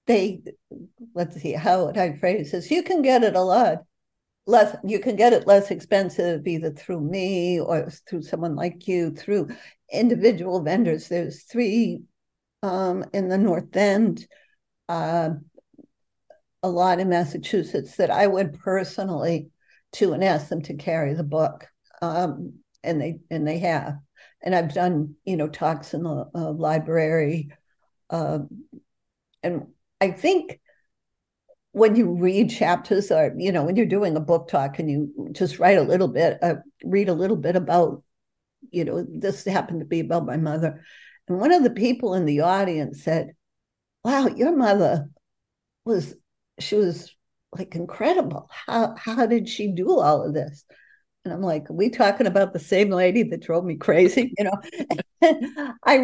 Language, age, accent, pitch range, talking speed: English, 60-79, American, 165-210 Hz, 165 wpm